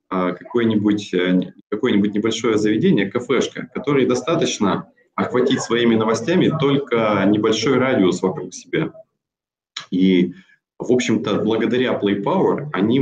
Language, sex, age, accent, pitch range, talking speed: Russian, male, 20-39, native, 90-120 Hz, 100 wpm